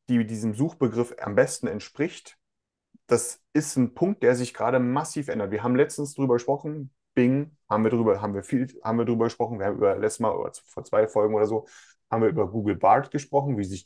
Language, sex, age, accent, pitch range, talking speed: German, male, 30-49, German, 100-140 Hz, 210 wpm